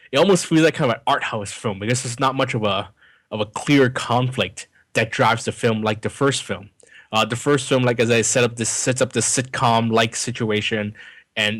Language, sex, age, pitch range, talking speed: English, male, 20-39, 105-120 Hz, 240 wpm